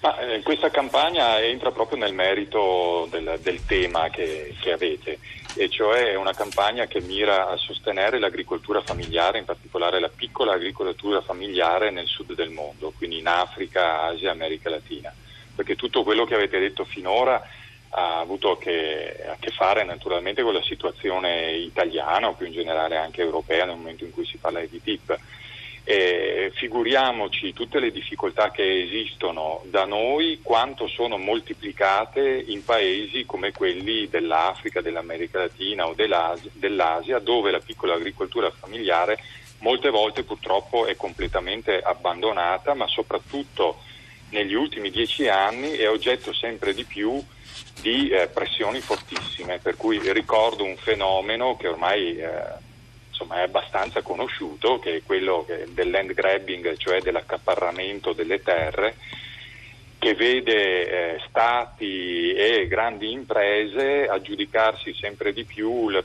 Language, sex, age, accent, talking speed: Italian, male, 40-59, native, 140 wpm